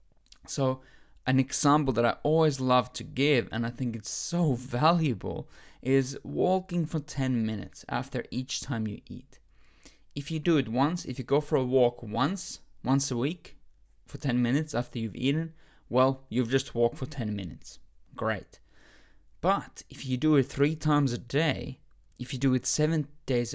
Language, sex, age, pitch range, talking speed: English, male, 20-39, 120-150 Hz, 175 wpm